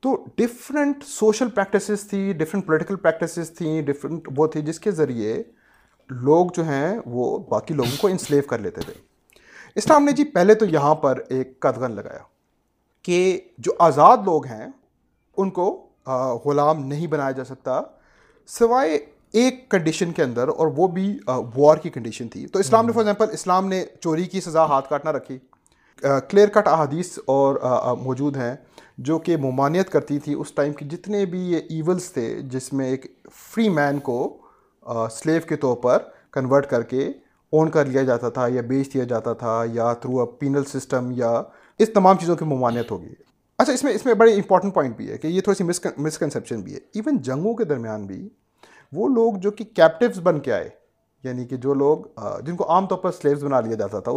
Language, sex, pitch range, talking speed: Urdu, male, 135-195 Hz, 190 wpm